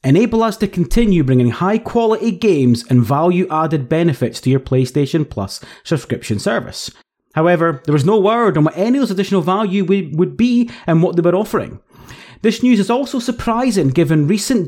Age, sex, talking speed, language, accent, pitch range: 30-49, male, 170 wpm, English, British, 130-195 Hz